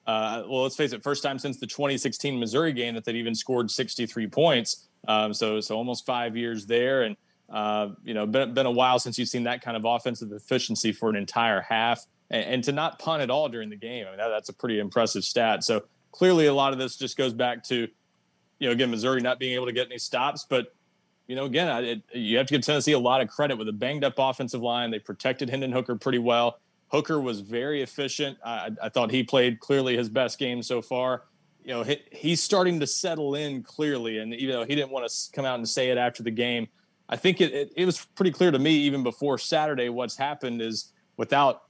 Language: English